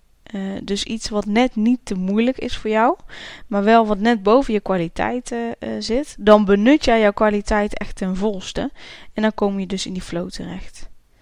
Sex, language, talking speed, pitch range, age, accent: female, Dutch, 200 wpm, 205-250 Hz, 10-29, Dutch